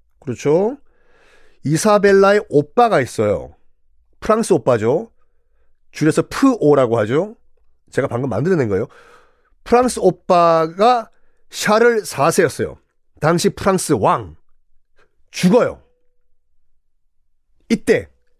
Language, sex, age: Korean, male, 40-59